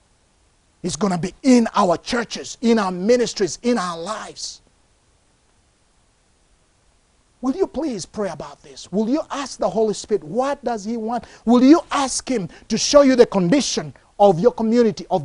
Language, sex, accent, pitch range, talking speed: English, male, Nigerian, 220-300 Hz, 165 wpm